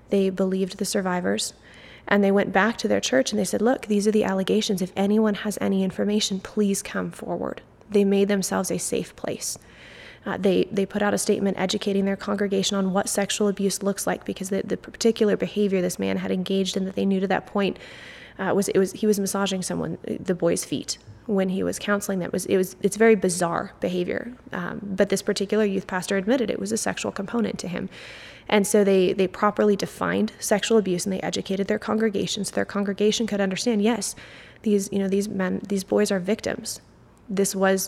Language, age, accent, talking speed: English, 20-39, American, 210 wpm